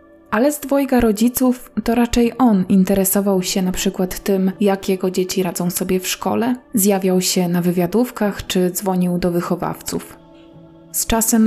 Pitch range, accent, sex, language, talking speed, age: 185-215 Hz, native, female, Polish, 150 wpm, 20-39